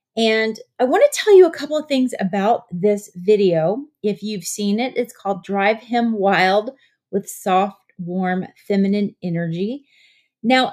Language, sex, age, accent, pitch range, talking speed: English, female, 30-49, American, 195-255 Hz, 150 wpm